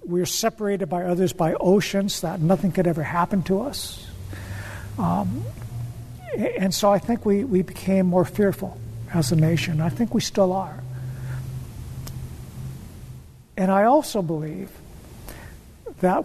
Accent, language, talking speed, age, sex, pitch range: American, English, 135 wpm, 60-79, male, 155-200 Hz